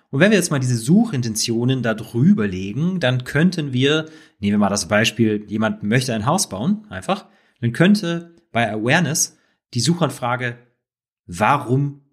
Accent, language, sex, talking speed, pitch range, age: German, German, male, 155 wpm, 115-155 Hz, 30-49